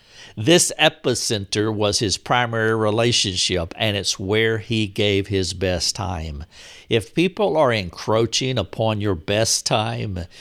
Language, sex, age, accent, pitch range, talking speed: English, male, 60-79, American, 105-125 Hz, 125 wpm